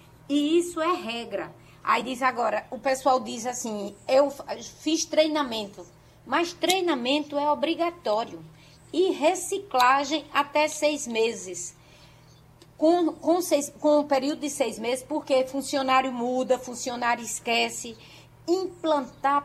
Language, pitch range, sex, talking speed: Portuguese, 250-325 Hz, female, 115 wpm